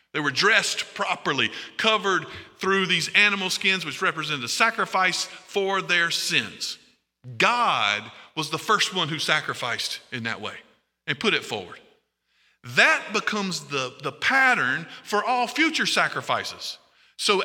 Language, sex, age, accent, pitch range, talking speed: English, male, 50-69, American, 170-220 Hz, 140 wpm